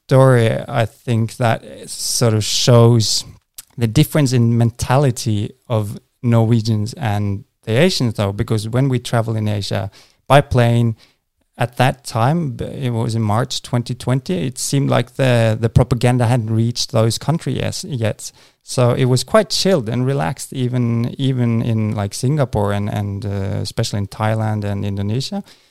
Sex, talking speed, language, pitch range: male, 145 wpm, English, 110-130 Hz